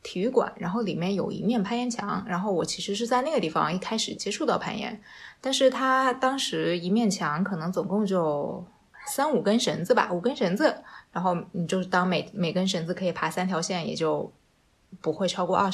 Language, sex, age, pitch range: Chinese, female, 20-39, 165-205 Hz